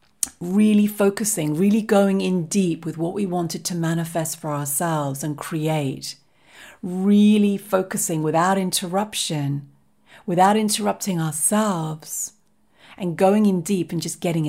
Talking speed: 125 wpm